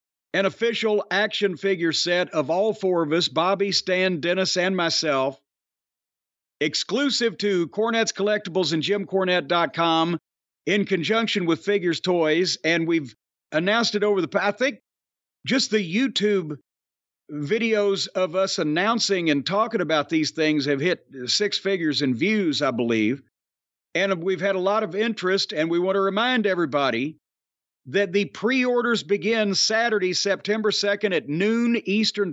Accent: American